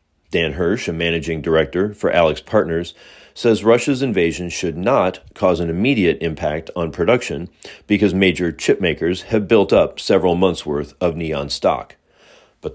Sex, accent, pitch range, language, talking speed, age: male, American, 75-95 Hz, English, 150 wpm, 40-59